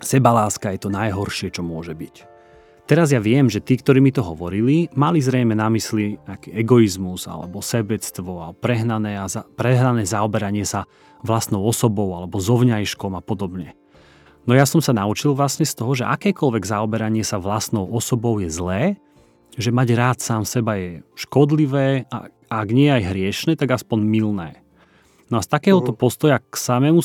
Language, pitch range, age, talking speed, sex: Slovak, 100-135 Hz, 30-49, 165 wpm, male